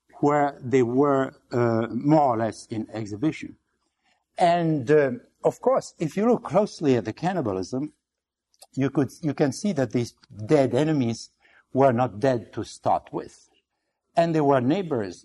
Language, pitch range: English, 120-155 Hz